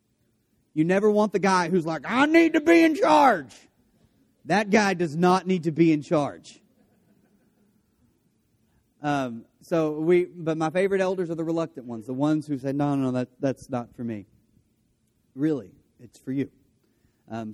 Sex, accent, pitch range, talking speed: male, American, 125-175 Hz, 170 wpm